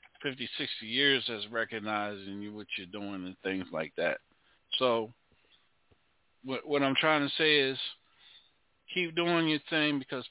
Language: English